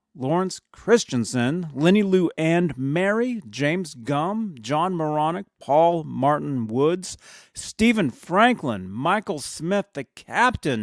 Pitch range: 120-175 Hz